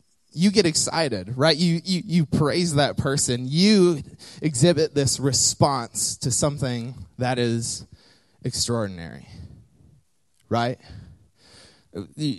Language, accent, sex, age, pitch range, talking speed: English, American, male, 20-39, 95-130 Hz, 100 wpm